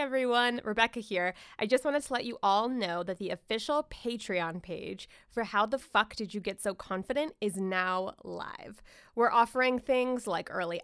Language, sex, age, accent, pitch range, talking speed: English, female, 20-39, American, 195-255 Hz, 185 wpm